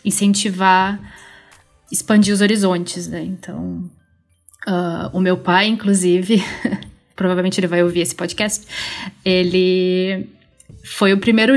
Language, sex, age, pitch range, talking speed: Portuguese, female, 20-39, 185-225 Hz, 110 wpm